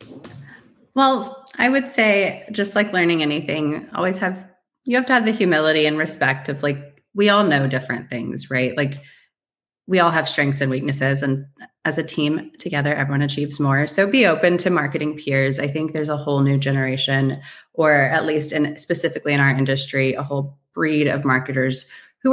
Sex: female